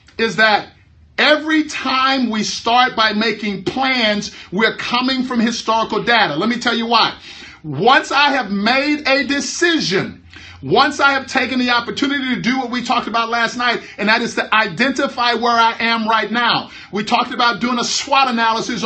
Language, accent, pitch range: English, American, 225-270 Hz